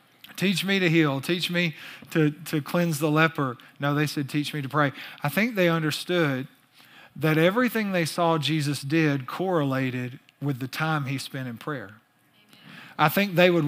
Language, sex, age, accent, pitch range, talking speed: English, male, 40-59, American, 135-165 Hz, 175 wpm